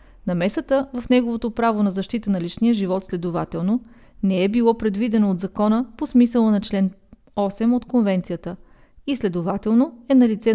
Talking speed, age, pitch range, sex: 155 wpm, 30-49, 200-255 Hz, female